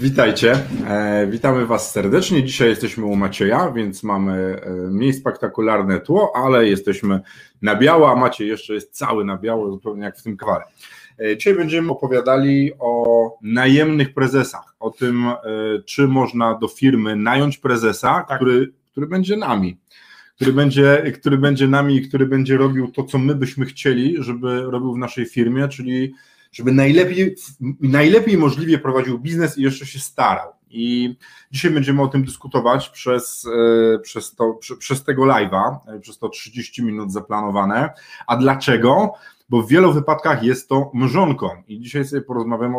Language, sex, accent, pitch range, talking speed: Polish, male, native, 115-140 Hz, 150 wpm